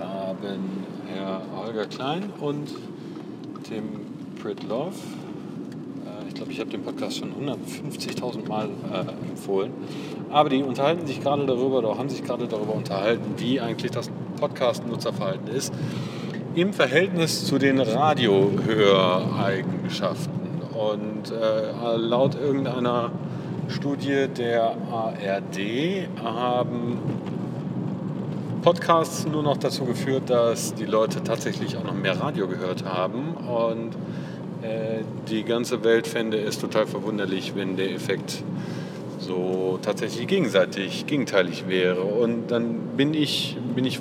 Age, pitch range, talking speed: 40-59, 110-145 Hz, 115 wpm